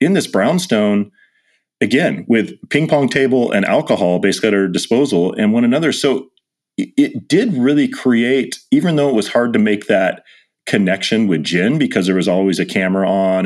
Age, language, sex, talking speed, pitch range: 40-59, English, male, 185 wpm, 85-120 Hz